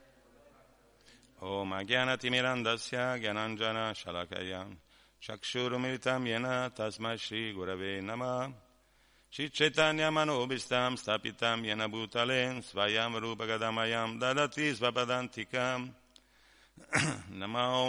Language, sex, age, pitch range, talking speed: Italian, male, 50-69, 110-130 Hz, 65 wpm